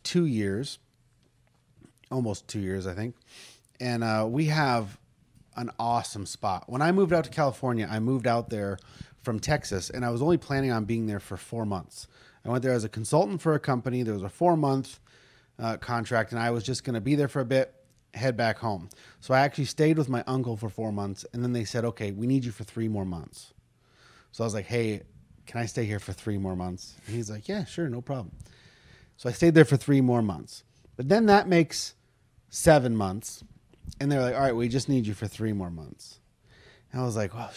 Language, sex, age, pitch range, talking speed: English, male, 30-49, 105-130 Hz, 220 wpm